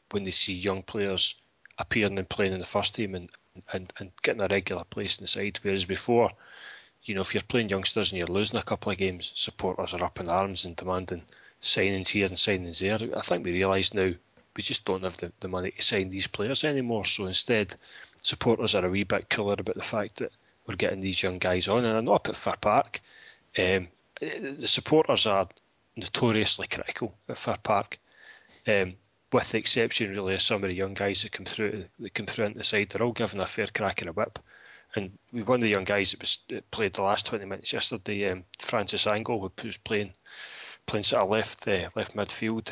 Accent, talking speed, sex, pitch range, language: British, 220 wpm, male, 95-110 Hz, English